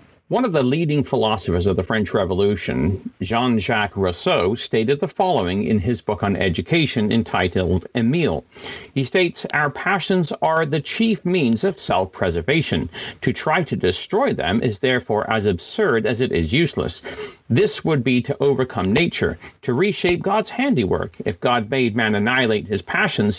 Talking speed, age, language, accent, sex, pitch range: 155 wpm, 50-69, English, American, male, 105-145 Hz